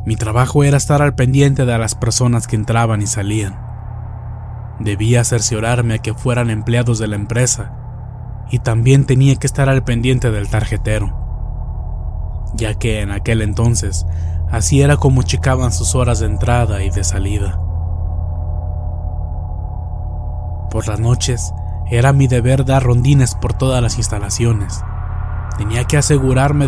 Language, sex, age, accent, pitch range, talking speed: Spanish, male, 20-39, Mexican, 100-120 Hz, 140 wpm